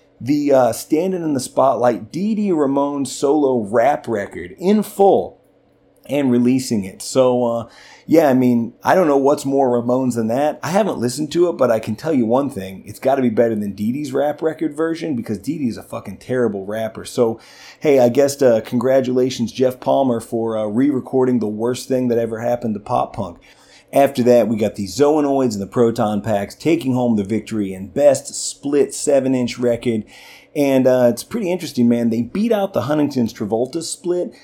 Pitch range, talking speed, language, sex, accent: 115-150 Hz, 195 wpm, English, male, American